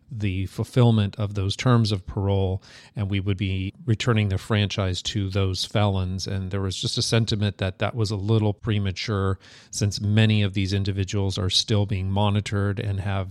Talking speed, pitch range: 180 wpm, 100-115 Hz